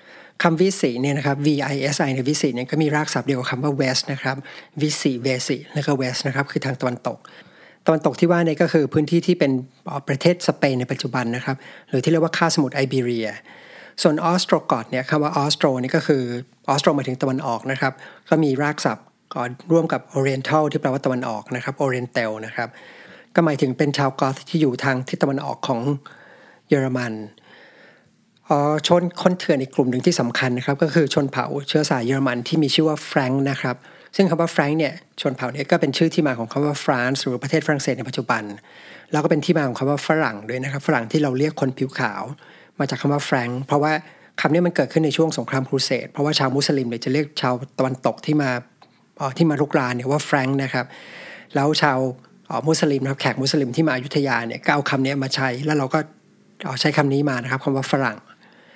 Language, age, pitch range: English, 60-79, 130-155 Hz